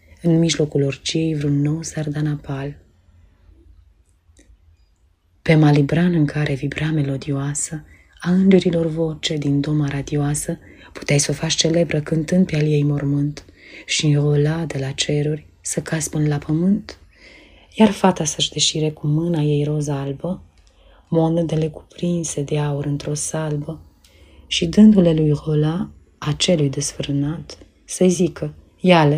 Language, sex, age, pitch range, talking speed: Romanian, female, 30-49, 140-165 Hz, 125 wpm